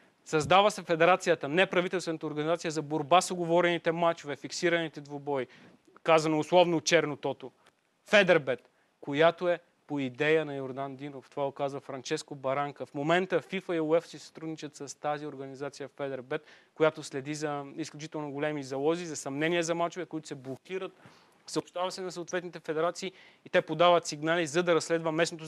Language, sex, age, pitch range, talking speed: Bulgarian, male, 30-49, 145-175 Hz, 155 wpm